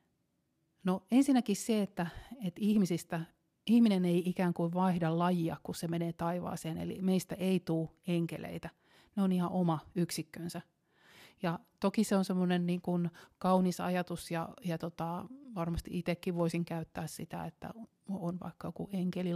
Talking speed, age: 135 wpm, 30-49